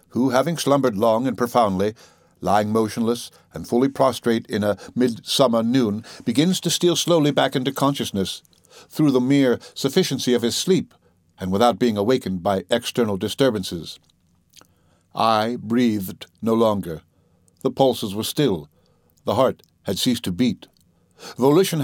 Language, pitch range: English, 105-140 Hz